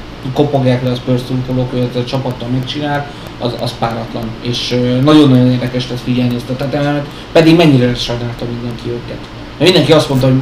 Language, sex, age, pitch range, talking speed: Hungarian, male, 30-49, 120-140 Hz, 175 wpm